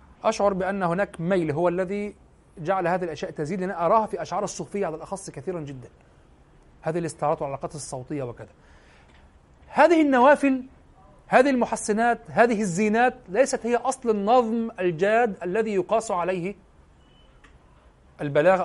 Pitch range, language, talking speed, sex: 140-220 Hz, Arabic, 125 wpm, male